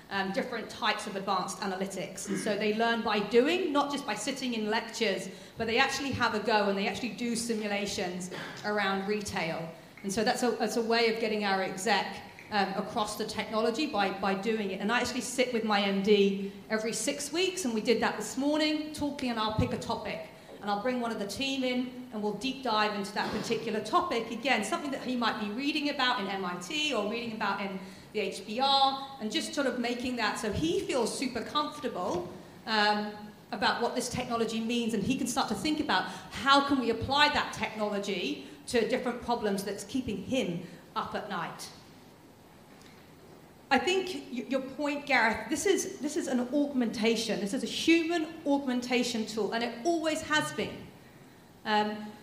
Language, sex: English, female